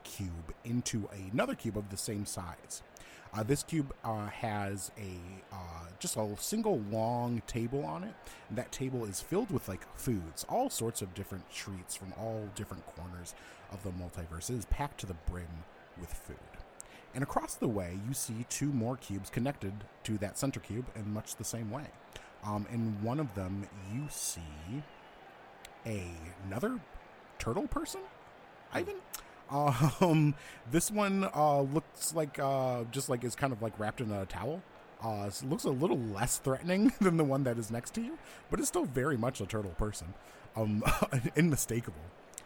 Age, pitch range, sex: 30-49, 95-130 Hz, male